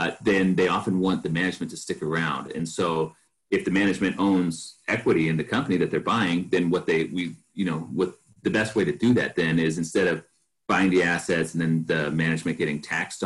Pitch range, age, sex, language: 80-90 Hz, 30-49, male, English